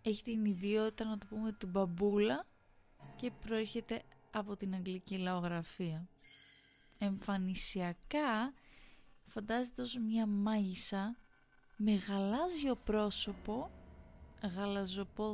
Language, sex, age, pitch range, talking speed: Greek, female, 20-39, 185-225 Hz, 90 wpm